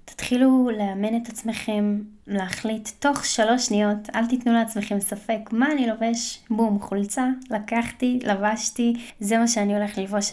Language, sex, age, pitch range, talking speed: Hebrew, female, 20-39, 210-245 Hz, 140 wpm